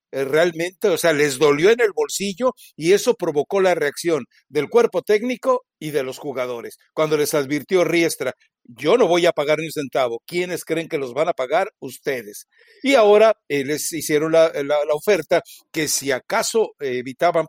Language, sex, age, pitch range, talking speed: Spanish, male, 60-79, 145-210 Hz, 185 wpm